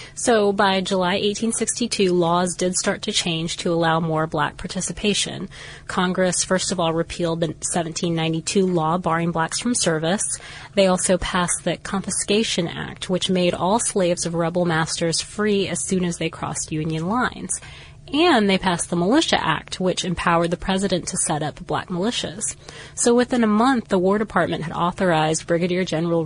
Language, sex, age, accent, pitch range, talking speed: English, female, 20-39, American, 165-195 Hz, 165 wpm